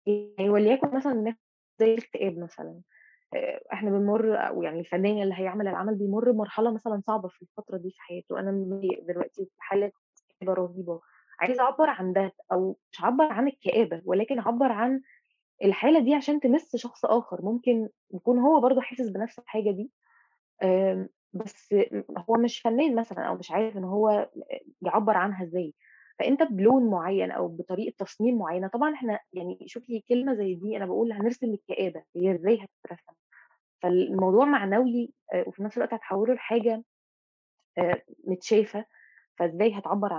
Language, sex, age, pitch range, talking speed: Arabic, female, 20-39, 190-235 Hz, 150 wpm